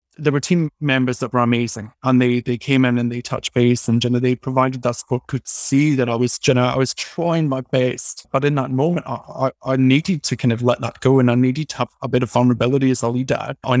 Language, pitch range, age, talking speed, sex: English, 125-145 Hz, 20-39, 270 wpm, male